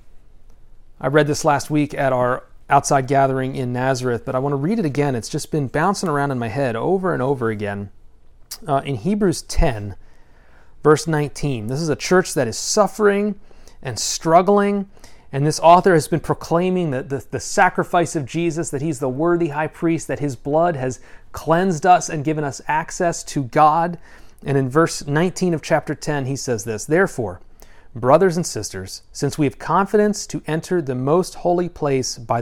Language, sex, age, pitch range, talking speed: English, male, 30-49, 130-170 Hz, 185 wpm